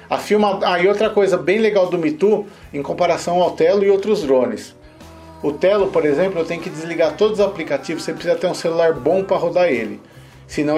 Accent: Brazilian